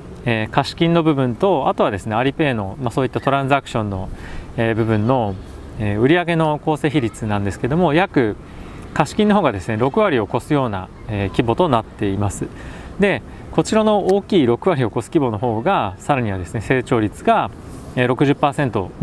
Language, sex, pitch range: Japanese, male, 110-145 Hz